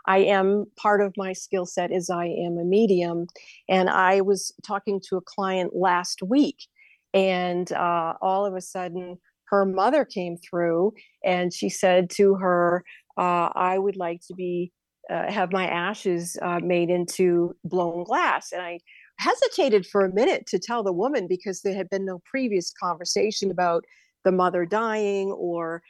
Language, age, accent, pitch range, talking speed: English, 50-69, American, 180-210 Hz, 170 wpm